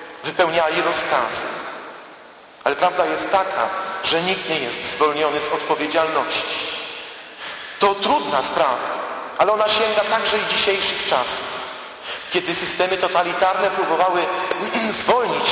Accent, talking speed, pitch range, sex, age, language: native, 110 wpm, 160-190 Hz, male, 40-59, Polish